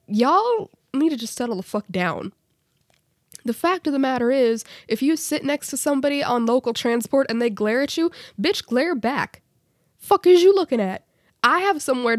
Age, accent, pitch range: 10-29, American, 205-280 Hz